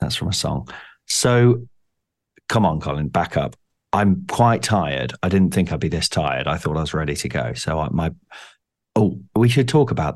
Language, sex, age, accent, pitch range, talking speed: English, male, 40-59, British, 85-110 Hz, 205 wpm